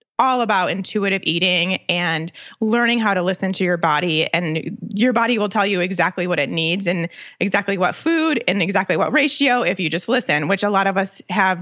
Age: 20-39